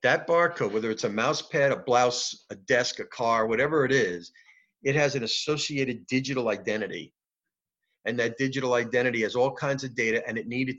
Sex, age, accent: male, 50-69, American